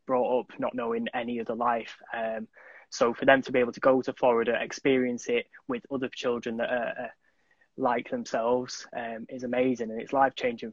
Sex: male